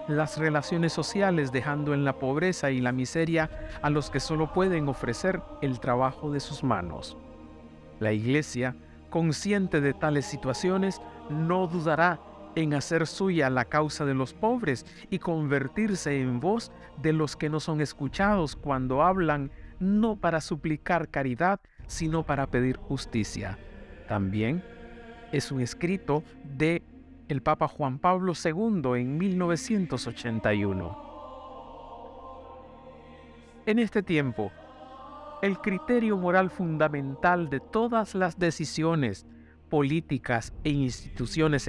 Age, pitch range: 50-69, 125-180 Hz